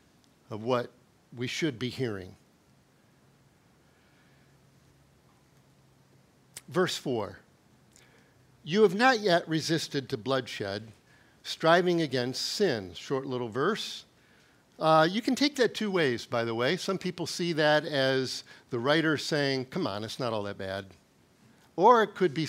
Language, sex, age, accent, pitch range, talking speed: English, male, 50-69, American, 125-155 Hz, 135 wpm